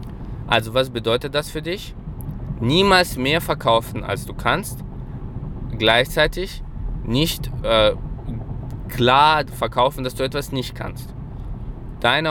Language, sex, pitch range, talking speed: German, male, 115-135 Hz, 110 wpm